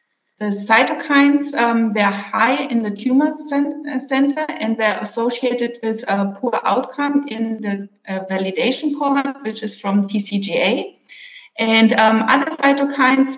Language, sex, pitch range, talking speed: English, female, 210-270 Hz, 145 wpm